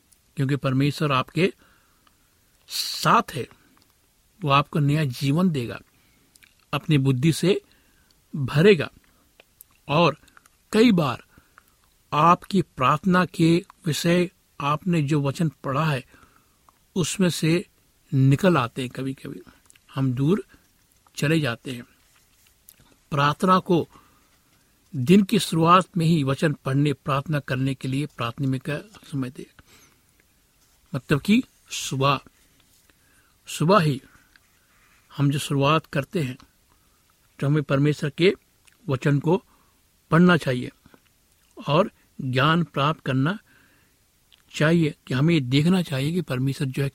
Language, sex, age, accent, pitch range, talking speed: Hindi, male, 60-79, native, 135-170 Hz, 110 wpm